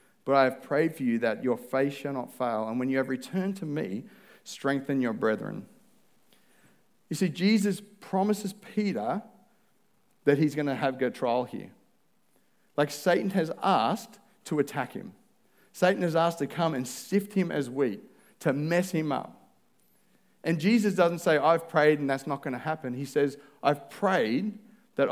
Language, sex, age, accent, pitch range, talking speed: English, male, 40-59, Australian, 140-200 Hz, 175 wpm